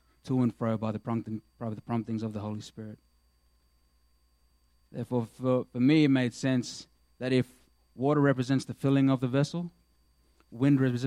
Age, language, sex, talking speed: 20-39, English, male, 150 wpm